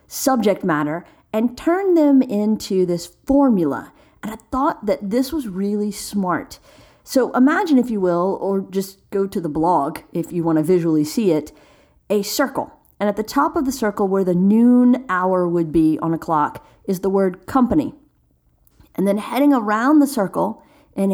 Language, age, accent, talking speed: English, 40-59, American, 180 wpm